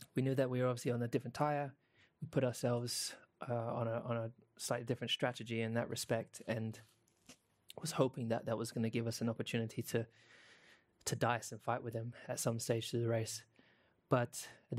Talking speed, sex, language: 205 wpm, male, English